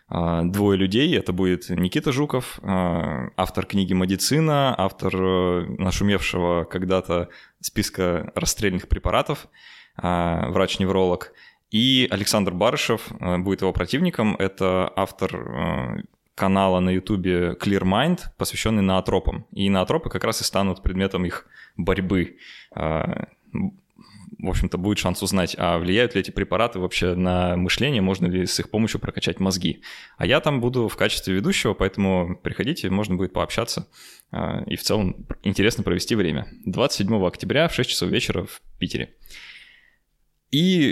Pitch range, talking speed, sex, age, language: 90-105 Hz, 130 wpm, male, 20-39, Russian